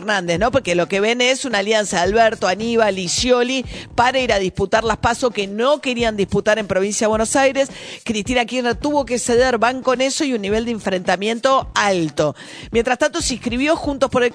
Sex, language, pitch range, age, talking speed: female, Spanish, 160-245 Hz, 40-59, 210 wpm